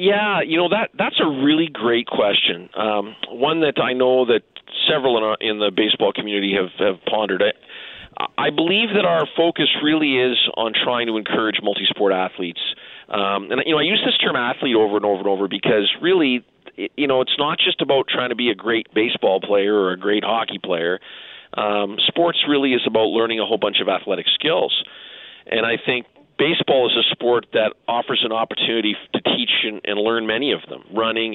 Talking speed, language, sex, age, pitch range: 200 wpm, English, male, 40-59, 105-125 Hz